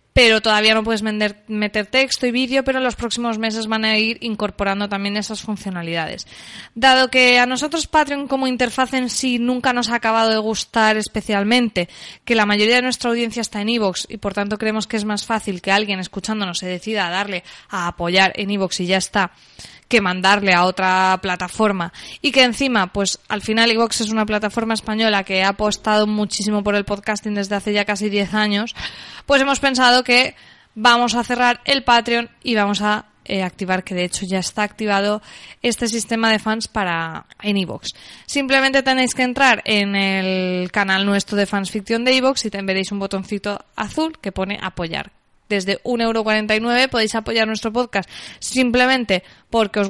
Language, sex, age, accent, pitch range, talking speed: Spanish, female, 20-39, Spanish, 200-245 Hz, 185 wpm